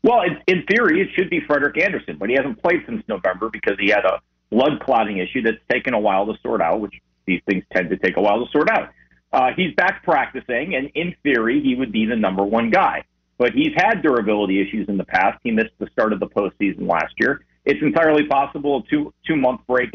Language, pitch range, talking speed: English, 100-140 Hz, 235 wpm